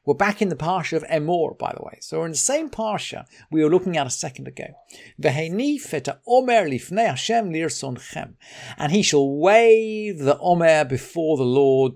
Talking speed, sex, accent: 160 wpm, male, British